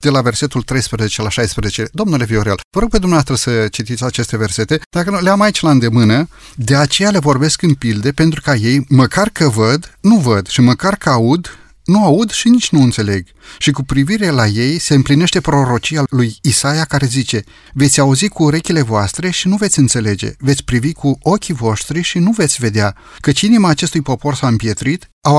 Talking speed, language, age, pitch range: 195 wpm, Romanian, 30-49, 120-165 Hz